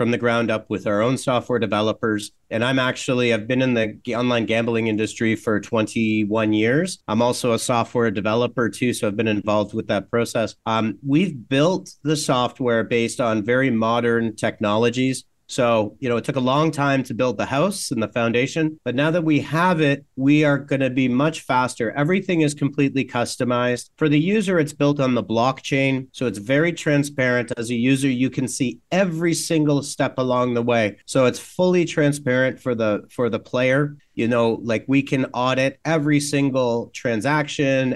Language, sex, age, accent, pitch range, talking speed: Spanish, male, 40-59, American, 115-145 Hz, 190 wpm